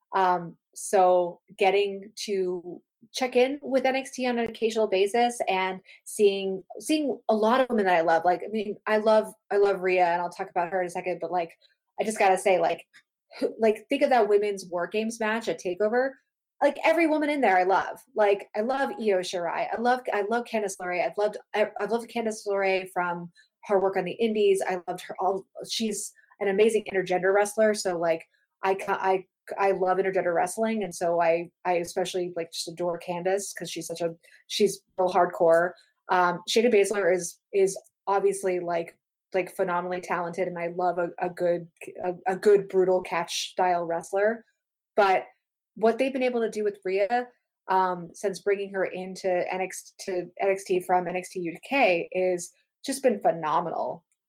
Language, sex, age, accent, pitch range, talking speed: English, female, 20-39, American, 180-220 Hz, 185 wpm